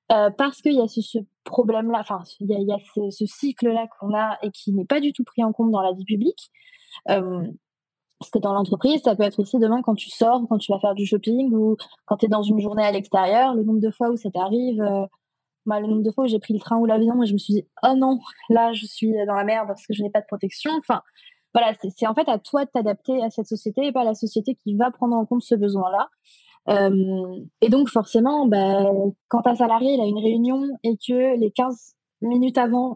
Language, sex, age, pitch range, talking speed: French, female, 20-39, 210-245 Hz, 260 wpm